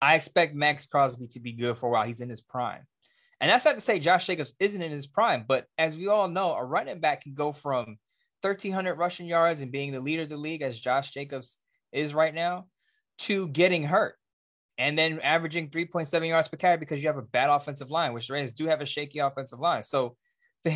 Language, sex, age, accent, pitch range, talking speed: English, male, 20-39, American, 135-175 Hz, 230 wpm